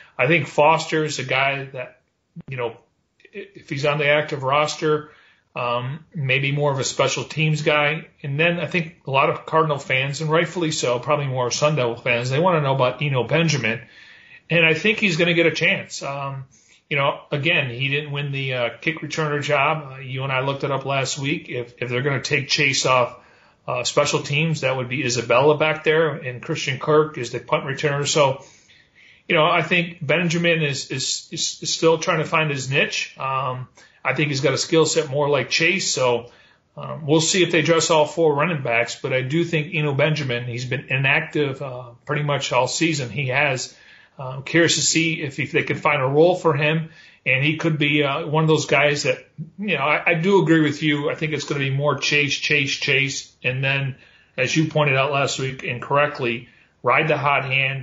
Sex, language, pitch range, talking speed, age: male, English, 130-155 Hz, 220 wpm, 40-59